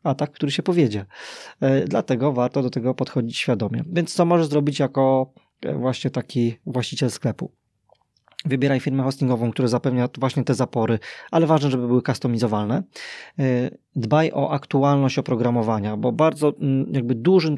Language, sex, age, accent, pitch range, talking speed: Polish, male, 20-39, native, 125-145 Hz, 140 wpm